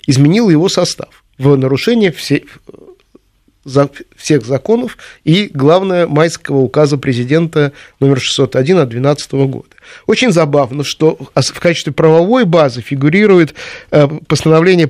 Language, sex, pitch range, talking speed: Russian, male, 140-170 Hz, 115 wpm